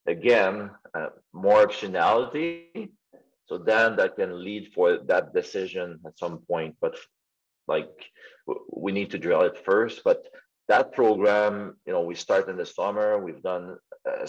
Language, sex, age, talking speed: English, male, 40-59, 160 wpm